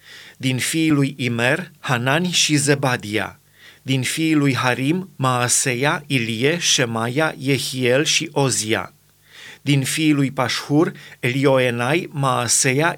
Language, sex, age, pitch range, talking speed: Romanian, male, 30-49, 125-150 Hz, 105 wpm